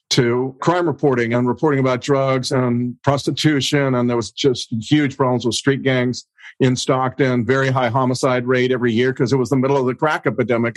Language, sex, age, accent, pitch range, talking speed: English, male, 50-69, American, 125-140 Hz, 195 wpm